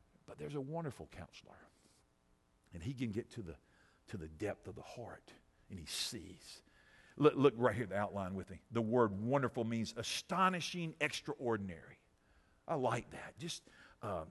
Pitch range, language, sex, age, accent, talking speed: 110-180 Hz, English, male, 50-69, American, 170 wpm